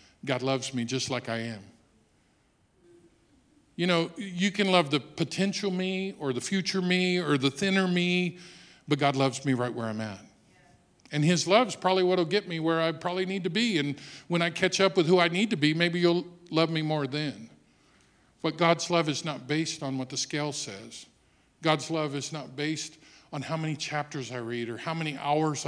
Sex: male